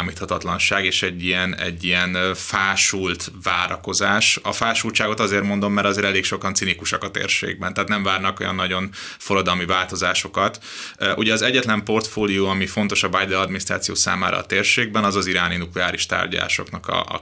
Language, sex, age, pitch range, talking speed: Hungarian, male, 30-49, 90-105 Hz, 155 wpm